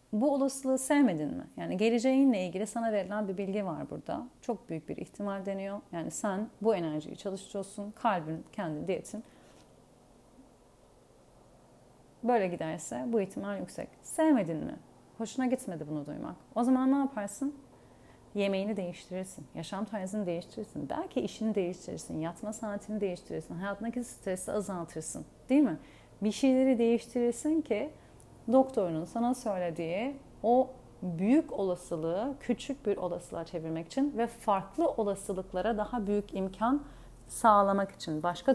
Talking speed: 125 wpm